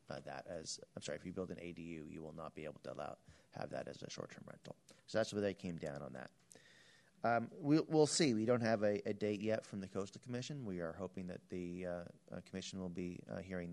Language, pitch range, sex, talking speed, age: English, 90-110 Hz, male, 250 wpm, 30-49